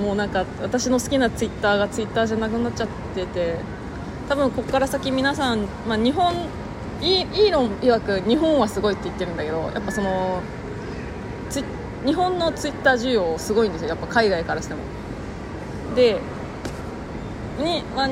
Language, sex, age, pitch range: Japanese, female, 20-39, 215-305 Hz